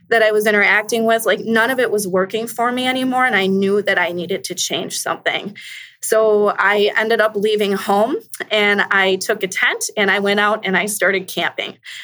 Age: 20-39